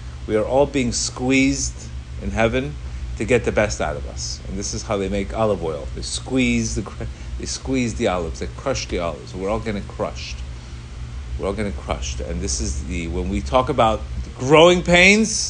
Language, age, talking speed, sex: English, 30-49, 200 wpm, male